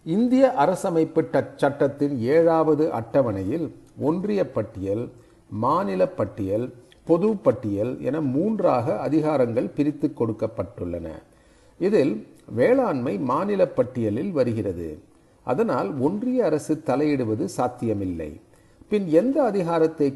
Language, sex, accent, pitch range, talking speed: Tamil, male, native, 115-155 Hz, 75 wpm